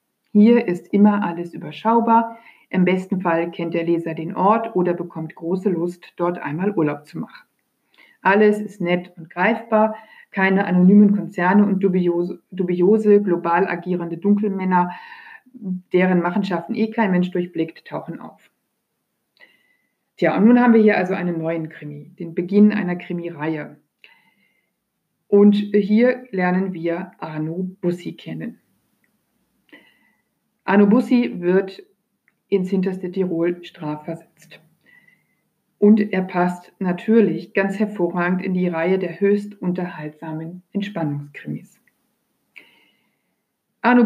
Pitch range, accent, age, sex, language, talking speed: 175-210 Hz, German, 50-69, female, German, 115 wpm